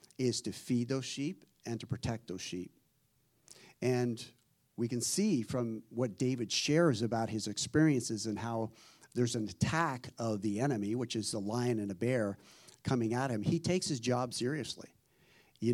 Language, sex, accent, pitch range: English, male, American, 110-135 Hz